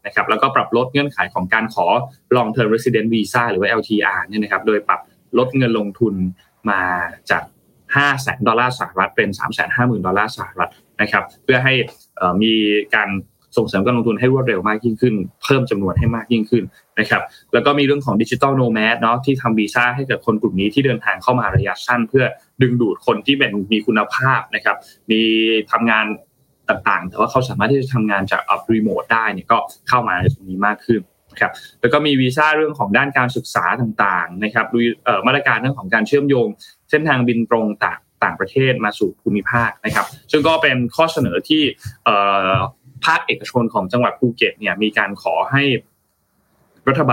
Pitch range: 105-130 Hz